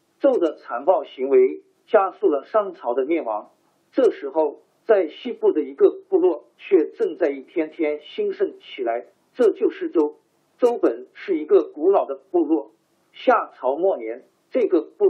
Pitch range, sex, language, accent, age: 335-405 Hz, male, Chinese, native, 50-69